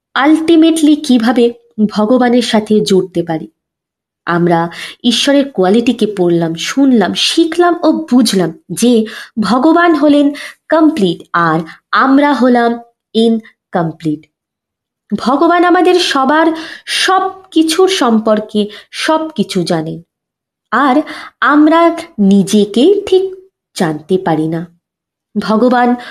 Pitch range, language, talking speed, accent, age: 195-310 Hz, Bengali, 85 wpm, native, 20-39